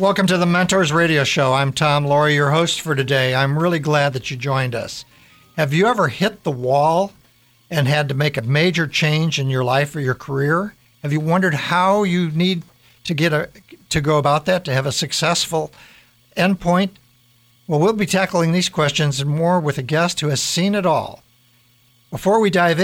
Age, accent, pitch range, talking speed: 60-79, American, 135-175 Hz, 200 wpm